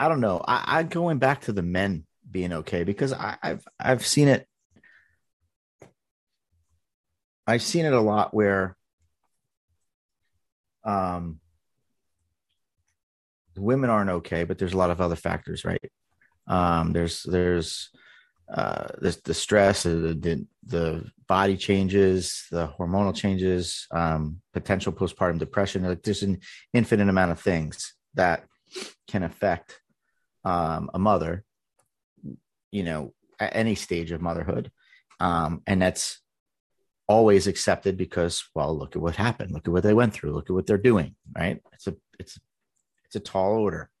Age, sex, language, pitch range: 30-49, male, English, 85-100 Hz